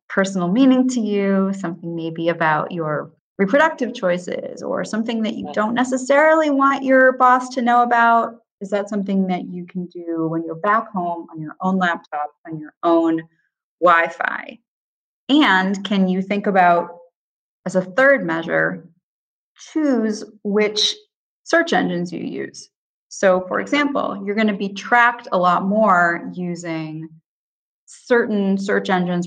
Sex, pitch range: female, 170-220 Hz